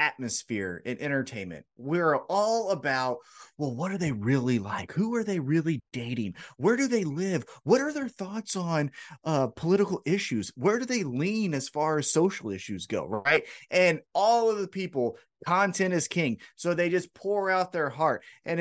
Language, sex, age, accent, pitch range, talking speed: English, male, 30-49, American, 130-195 Hz, 180 wpm